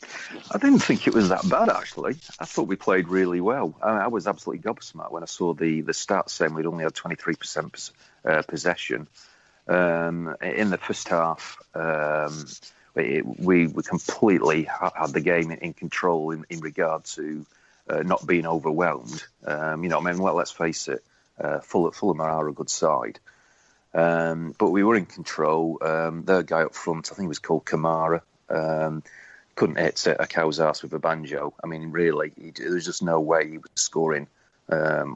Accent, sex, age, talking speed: British, male, 40-59, 185 wpm